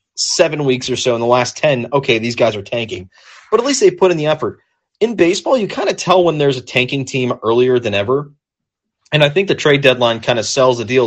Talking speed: 250 wpm